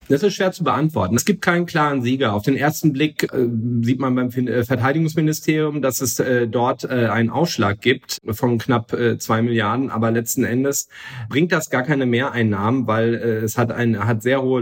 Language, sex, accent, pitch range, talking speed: German, male, German, 110-130 Hz, 200 wpm